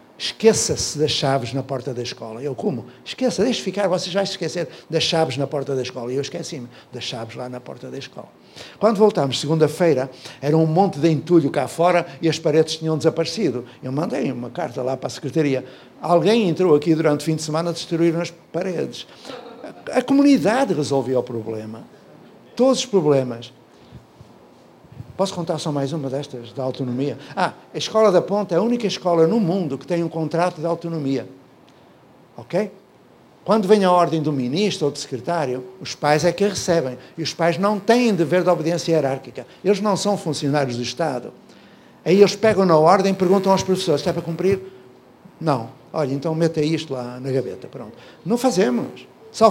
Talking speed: 185 wpm